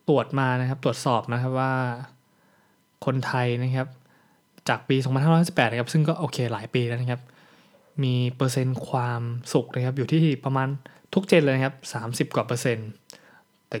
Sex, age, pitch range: male, 20-39, 125-155 Hz